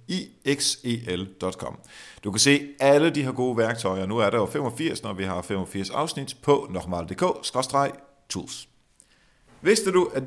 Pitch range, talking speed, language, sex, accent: 100-130 Hz, 140 wpm, Danish, male, native